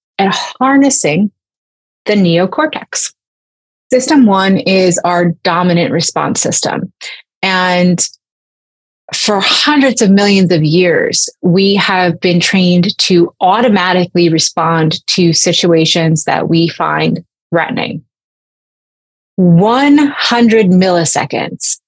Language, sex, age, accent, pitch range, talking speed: English, female, 30-49, American, 180-240 Hz, 90 wpm